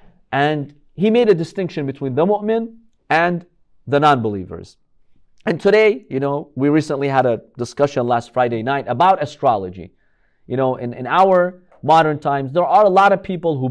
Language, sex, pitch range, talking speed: English, male, 145-195 Hz, 170 wpm